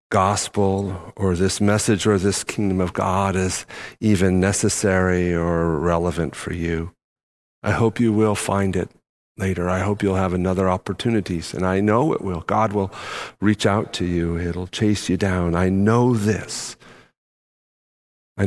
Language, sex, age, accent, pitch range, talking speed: English, male, 50-69, American, 90-110 Hz, 155 wpm